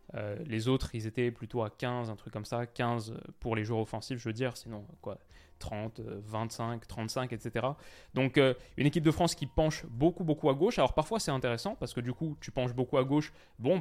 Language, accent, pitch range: French, French, 115-145 Hz